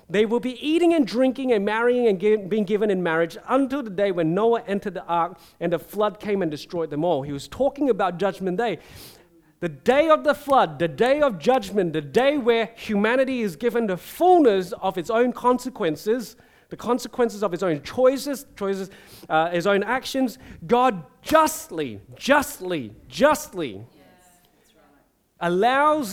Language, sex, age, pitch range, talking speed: English, male, 30-49, 175-255 Hz, 165 wpm